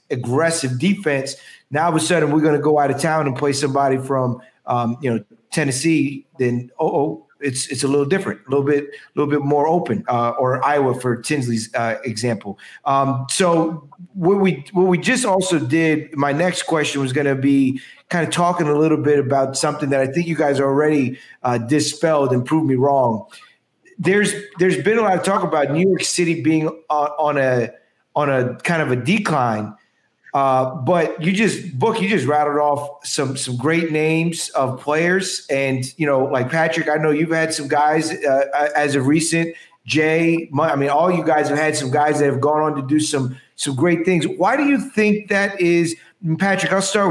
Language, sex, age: English, male, 30-49